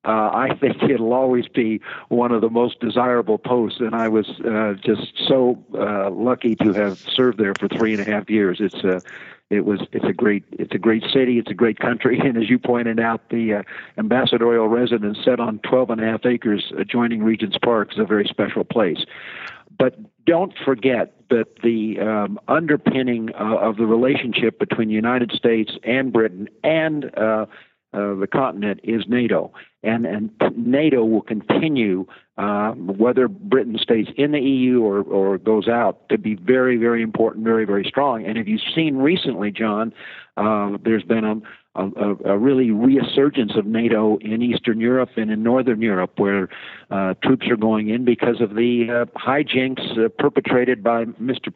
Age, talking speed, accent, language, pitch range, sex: 50-69, 180 wpm, American, English, 110-125 Hz, male